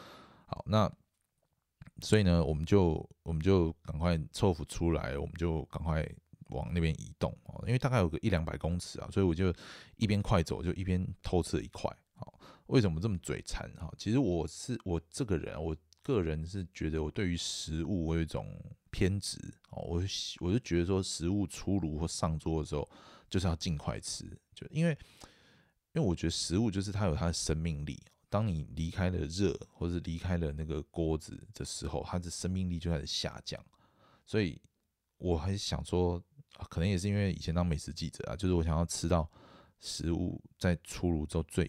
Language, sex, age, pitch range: Chinese, male, 20-39, 80-100 Hz